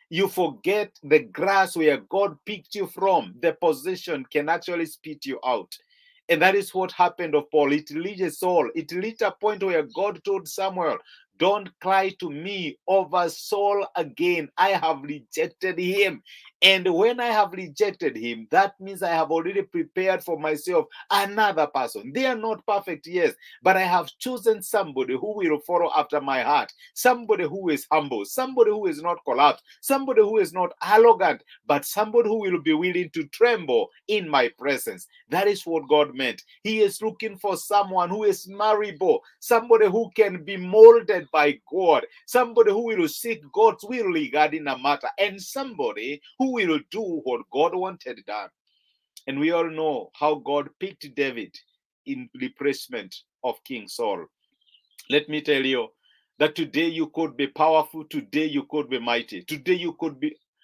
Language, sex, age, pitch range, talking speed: English, male, 50-69, 155-235 Hz, 170 wpm